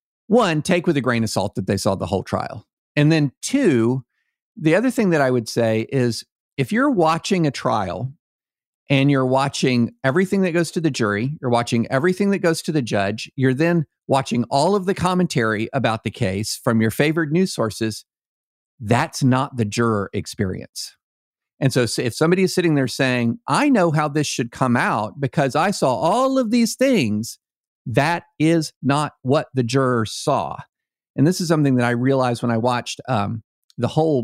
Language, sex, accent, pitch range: English, male, American, 120-165 Hz